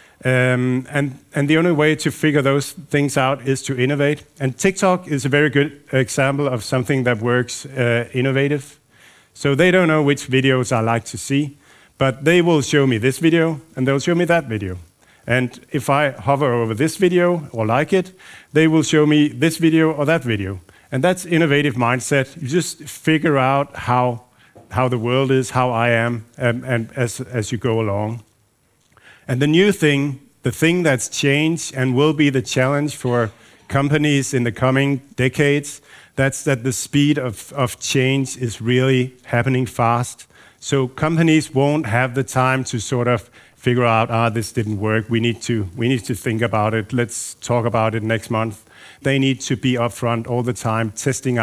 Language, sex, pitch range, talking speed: Danish, male, 120-145 Hz, 190 wpm